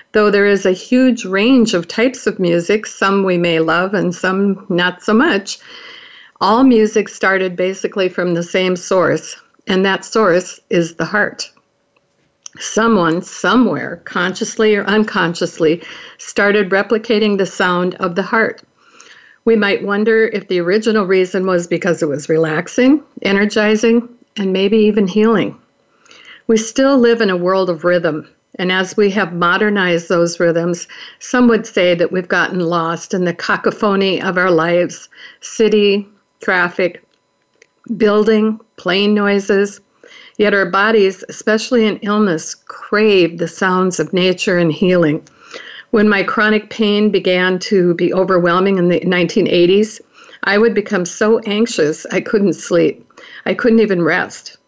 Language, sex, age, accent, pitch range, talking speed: English, female, 60-79, American, 180-220 Hz, 145 wpm